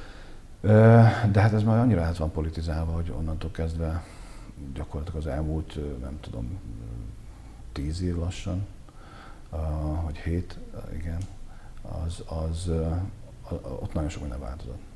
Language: Hungarian